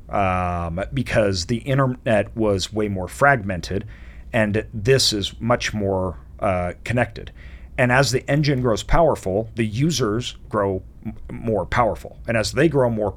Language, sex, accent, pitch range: English, male, American, 85-125 Hz